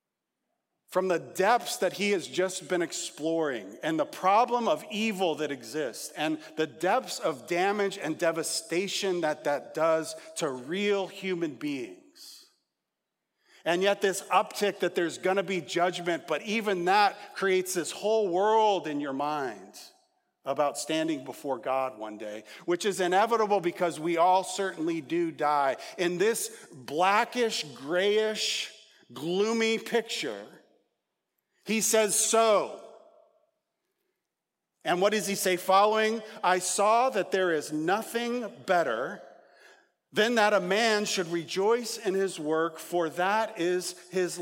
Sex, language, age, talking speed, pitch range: male, English, 40-59, 135 wpm, 175-225 Hz